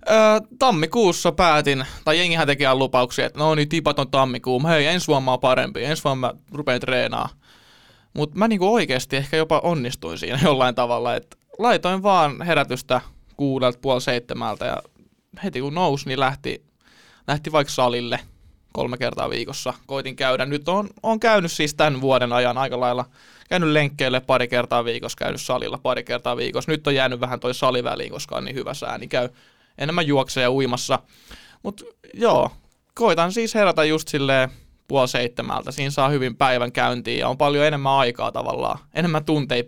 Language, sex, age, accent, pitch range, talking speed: Finnish, male, 20-39, native, 125-165 Hz, 170 wpm